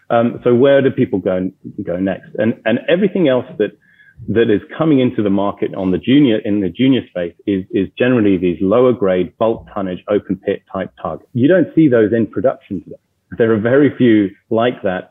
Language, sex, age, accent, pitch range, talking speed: English, male, 30-49, British, 95-120 Hz, 205 wpm